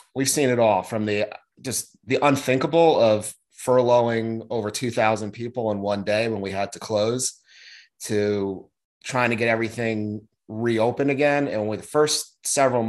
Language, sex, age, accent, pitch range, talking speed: English, male, 30-49, American, 100-120 Hz, 160 wpm